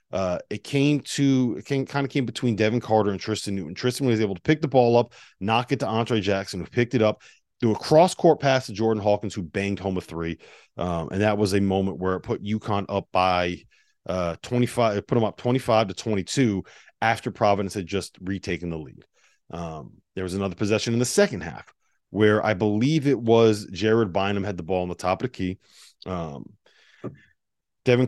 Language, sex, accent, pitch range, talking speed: English, male, American, 95-120 Hz, 210 wpm